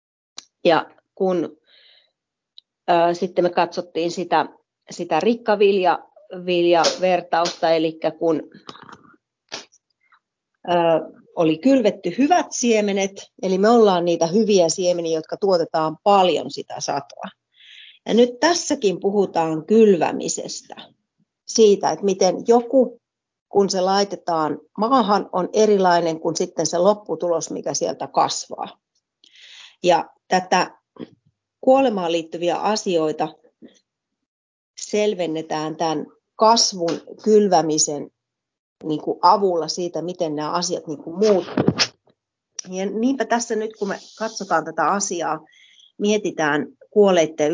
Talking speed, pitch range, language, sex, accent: 95 wpm, 165-215 Hz, Finnish, female, native